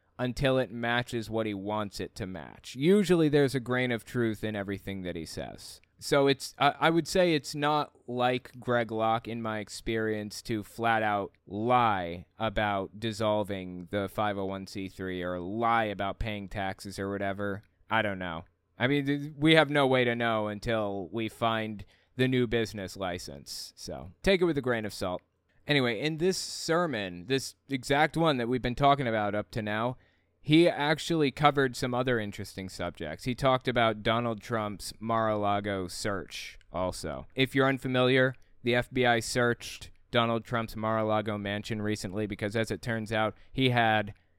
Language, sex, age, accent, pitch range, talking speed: English, male, 20-39, American, 100-125 Hz, 170 wpm